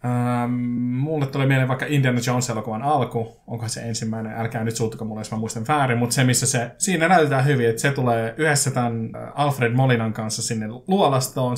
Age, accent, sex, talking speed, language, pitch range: 20-39, native, male, 185 wpm, Finnish, 115-135 Hz